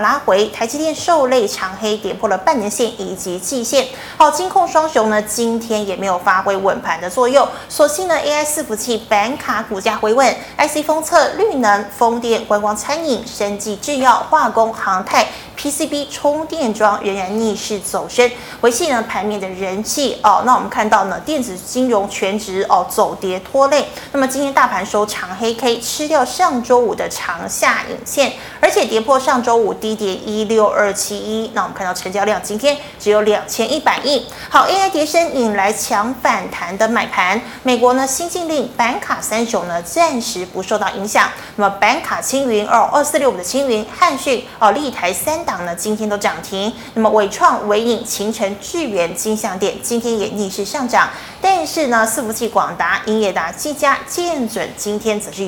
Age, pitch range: 20-39, 205-280 Hz